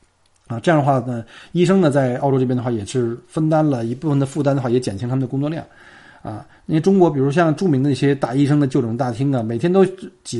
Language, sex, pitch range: Chinese, male, 125-165 Hz